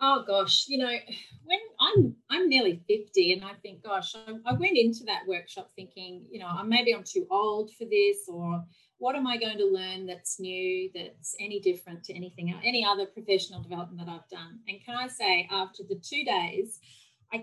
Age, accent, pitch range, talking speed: 30-49, Australian, 180-230 Hz, 205 wpm